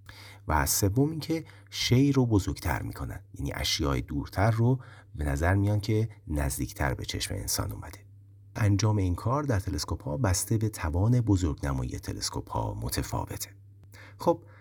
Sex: male